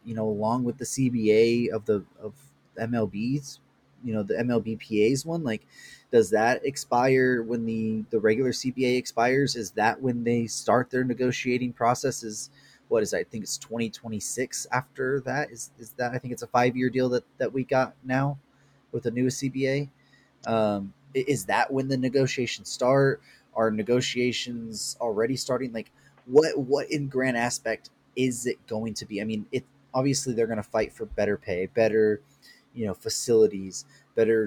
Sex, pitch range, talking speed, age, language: male, 110-130 Hz, 170 wpm, 20-39, English